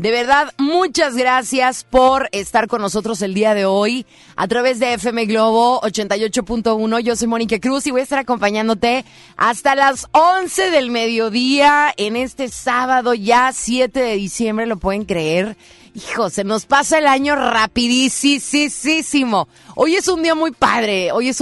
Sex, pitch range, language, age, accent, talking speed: female, 205-275 Hz, Spanish, 30-49, Mexican, 160 wpm